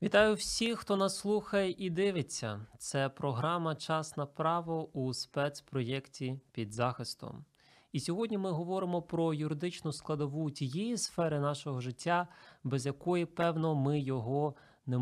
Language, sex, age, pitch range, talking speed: Ukrainian, male, 20-39, 125-155 Hz, 130 wpm